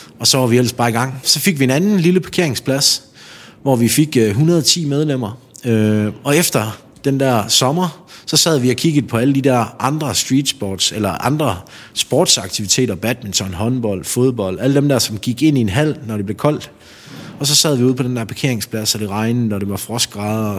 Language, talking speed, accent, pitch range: Danish, 215 wpm, native, 110-135 Hz